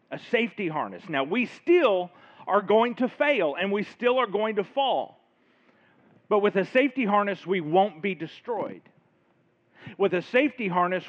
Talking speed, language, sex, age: 160 wpm, English, male, 40-59